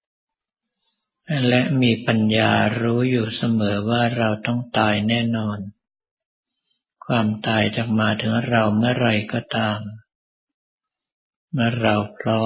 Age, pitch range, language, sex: 50-69, 110-120 Hz, Thai, male